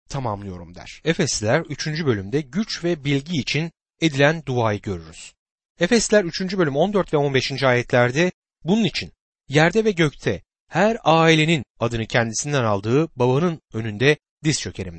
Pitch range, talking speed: 125-185 Hz, 130 wpm